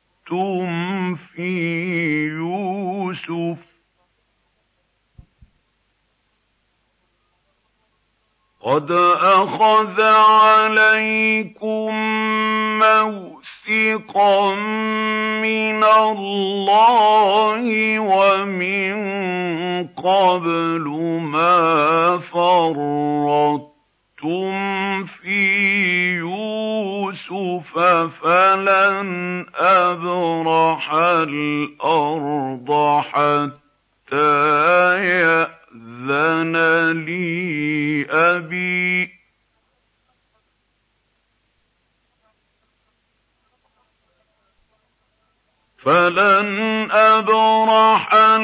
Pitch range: 165-215 Hz